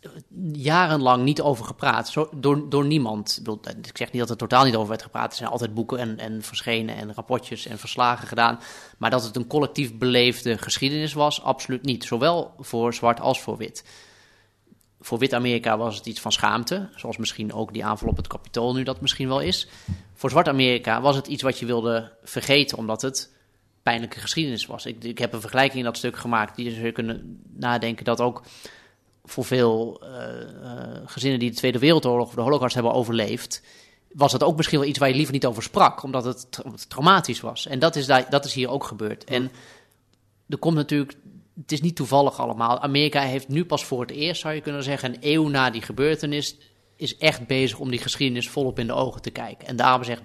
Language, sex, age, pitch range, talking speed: Dutch, male, 30-49, 115-140 Hz, 210 wpm